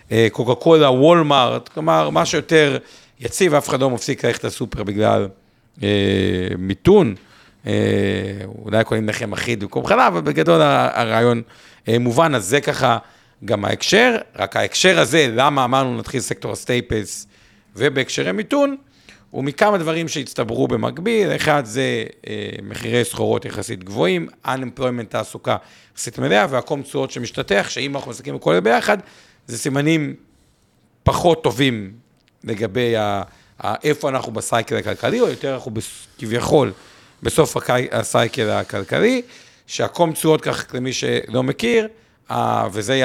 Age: 50-69